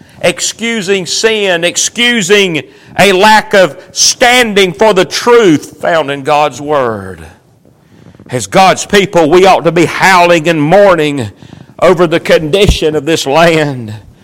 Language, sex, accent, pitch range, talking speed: English, male, American, 165-210 Hz, 125 wpm